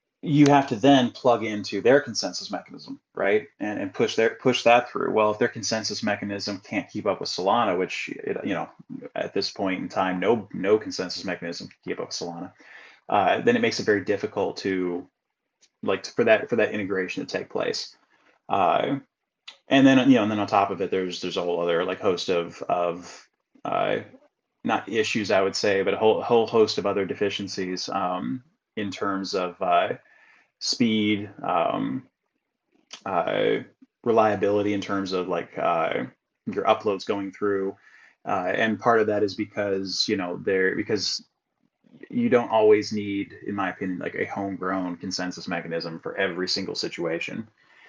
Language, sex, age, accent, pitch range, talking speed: English, male, 20-39, American, 95-120 Hz, 180 wpm